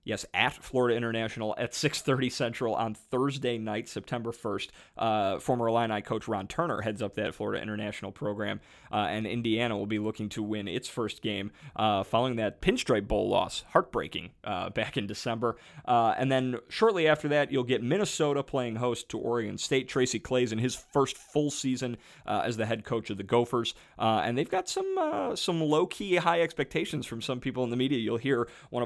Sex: male